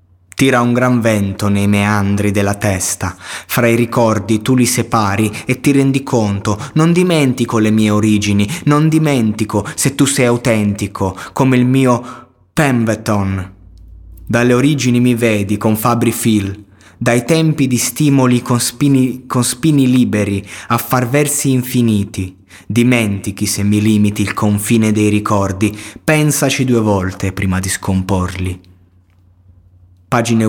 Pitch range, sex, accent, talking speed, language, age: 100-120 Hz, male, native, 135 wpm, Italian, 20-39